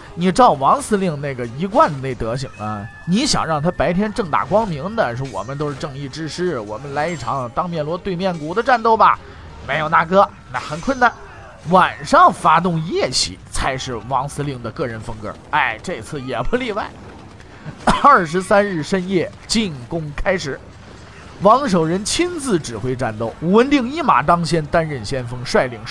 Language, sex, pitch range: Chinese, male, 130-215 Hz